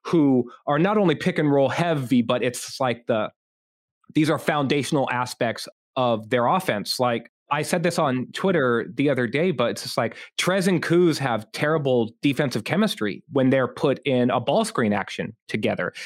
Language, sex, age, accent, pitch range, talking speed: English, male, 30-49, American, 135-175 Hz, 180 wpm